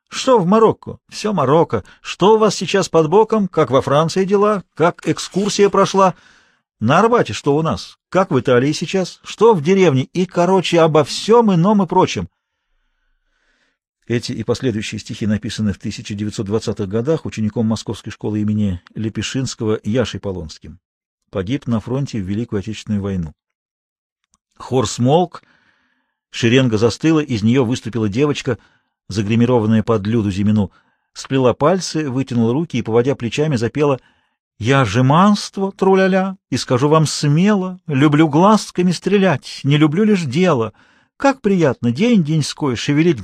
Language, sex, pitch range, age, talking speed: Russian, male, 120-190 Hz, 50-69, 135 wpm